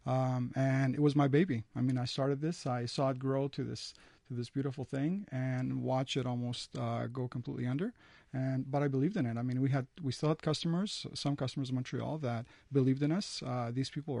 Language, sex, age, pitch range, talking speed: English, male, 40-59, 125-150 Hz, 230 wpm